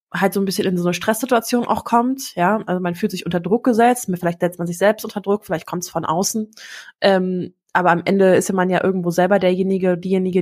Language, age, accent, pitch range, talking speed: German, 20-39, German, 180-200 Hz, 240 wpm